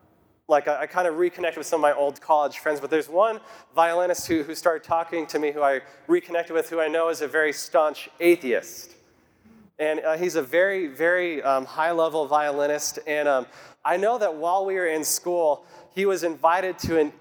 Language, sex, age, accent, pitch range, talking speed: English, male, 30-49, American, 145-180 Hz, 205 wpm